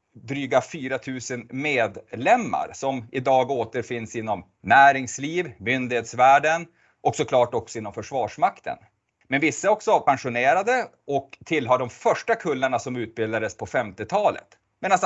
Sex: male